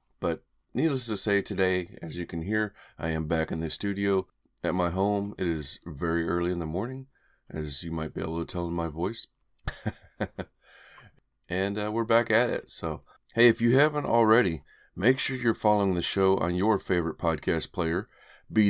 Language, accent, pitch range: English, American, 85-110 Hz